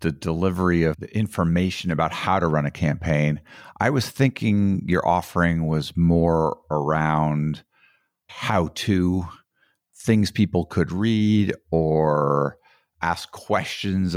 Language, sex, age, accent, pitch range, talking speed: English, male, 50-69, American, 80-100 Hz, 120 wpm